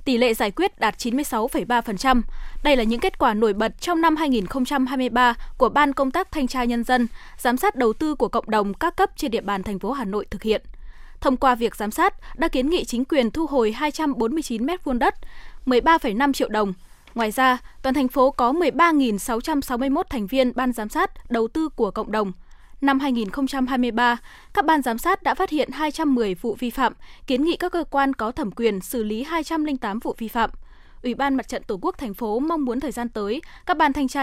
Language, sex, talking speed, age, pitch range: Vietnamese, female, 210 wpm, 10-29, 230-300 Hz